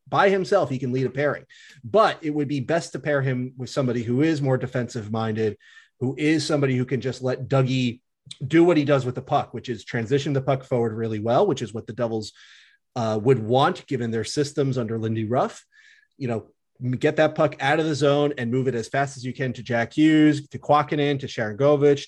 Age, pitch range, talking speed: 30-49, 125-150 Hz, 225 wpm